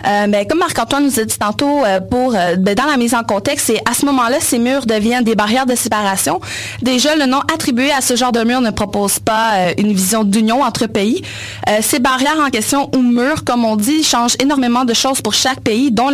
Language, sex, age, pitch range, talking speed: French, female, 30-49, 220-270 Hz, 235 wpm